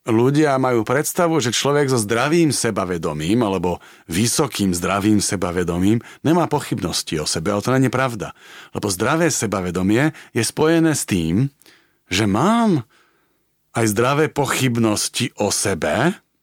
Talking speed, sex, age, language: 125 wpm, male, 40-59, Slovak